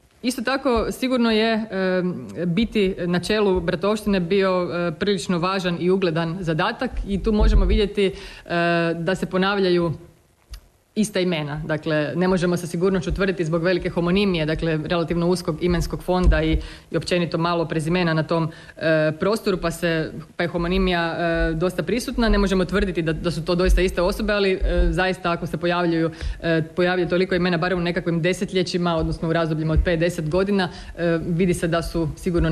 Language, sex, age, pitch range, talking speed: Croatian, female, 30-49, 160-190 Hz, 170 wpm